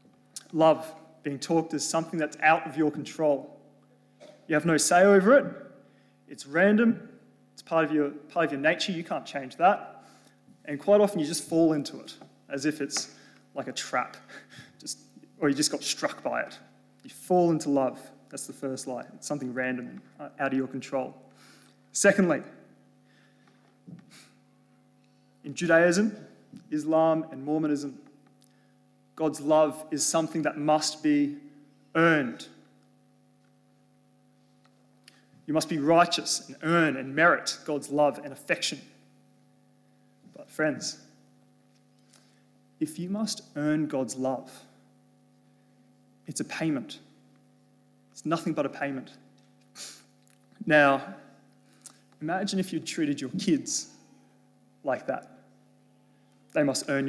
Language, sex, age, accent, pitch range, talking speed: English, male, 20-39, Australian, 145-165 Hz, 125 wpm